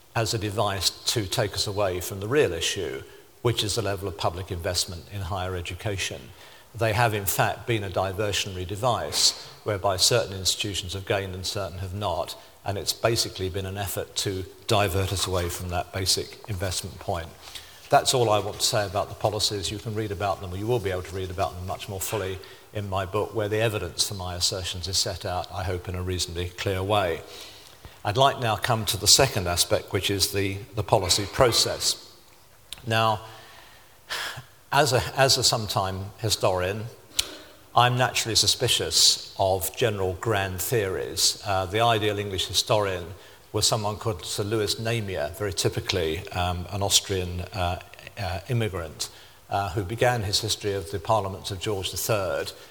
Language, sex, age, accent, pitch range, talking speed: English, male, 50-69, British, 95-110 Hz, 180 wpm